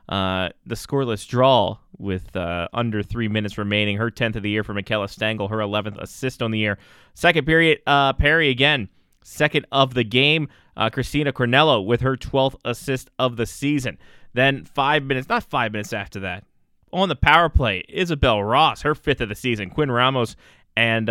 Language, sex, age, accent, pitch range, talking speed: English, male, 20-39, American, 105-130 Hz, 185 wpm